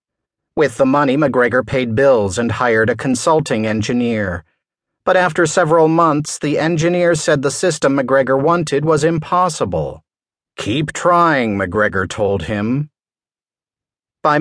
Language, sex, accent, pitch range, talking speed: English, male, American, 115-160 Hz, 125 wpm